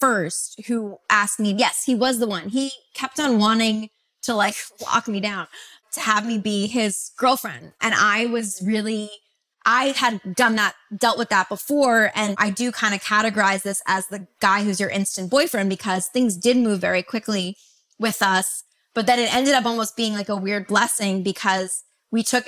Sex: female